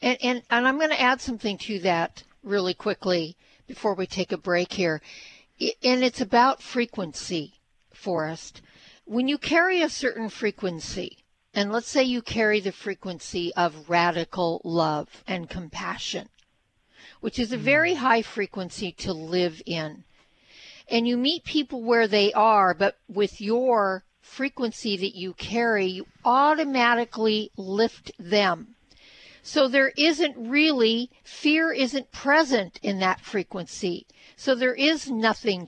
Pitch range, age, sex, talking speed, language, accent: 195-255 Hz, 60-79, female, 140 wpm, English, American